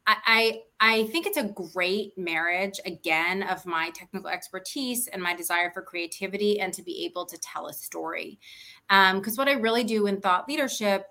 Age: 20-39